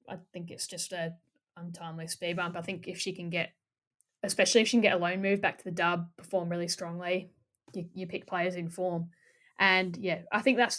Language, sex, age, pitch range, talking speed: English, female, 10-29, 180-215 Hz, 220 wpm